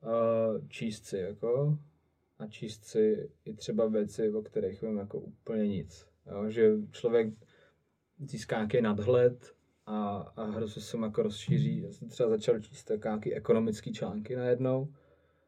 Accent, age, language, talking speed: native, 20-39, Czech, 145 wpm